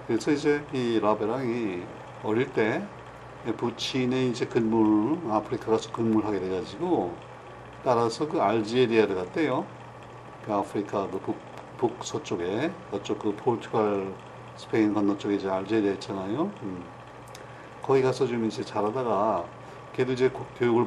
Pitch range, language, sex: 105-140 Hz, Korean, male